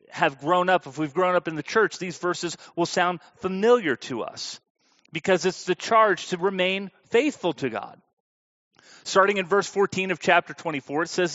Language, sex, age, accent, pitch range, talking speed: English, male, 40-59, American, 145-190 Hz, 185 wpm